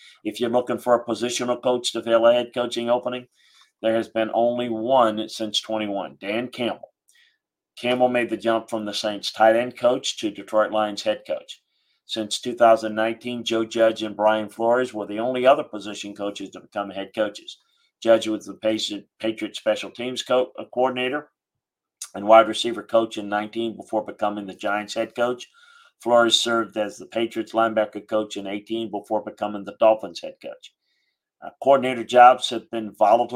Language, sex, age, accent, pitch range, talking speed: English, male, 50-69, American, 110-125 Hz, 170 wpm